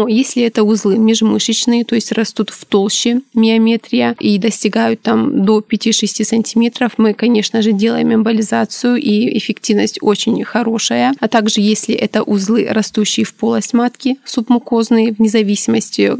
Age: 20-39